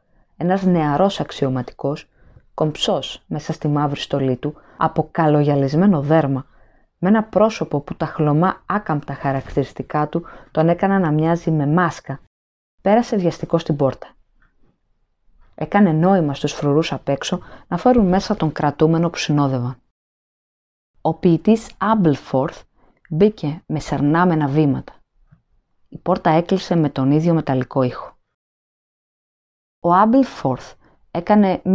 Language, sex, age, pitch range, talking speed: Greek, female, 20-39, 140-180 Hz, 120 wpm